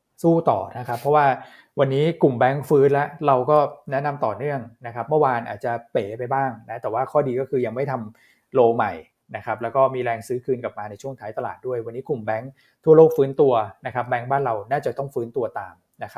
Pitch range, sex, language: 115-145 Hz, male, Thai